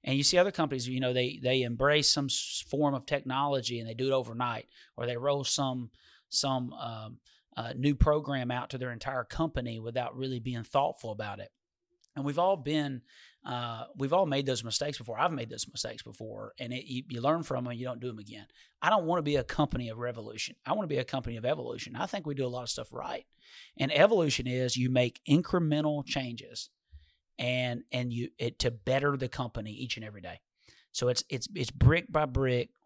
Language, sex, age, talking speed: English, male, 30-49, 215 wpm